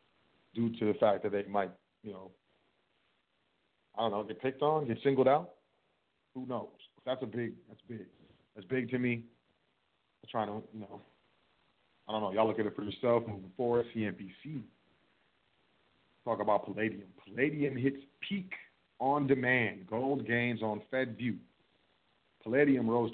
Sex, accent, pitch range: male, American, 105-130 Hz